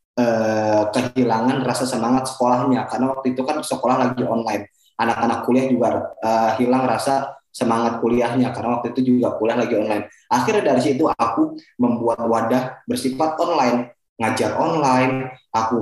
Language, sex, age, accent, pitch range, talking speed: Indonesian, male, 20-39, native, 110-130 Hz, 145 wpm